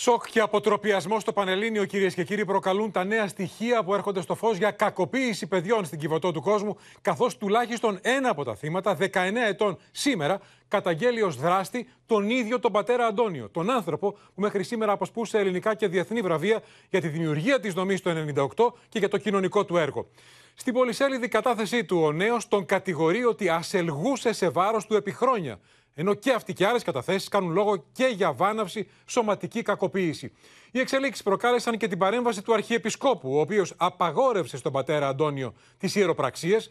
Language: Greek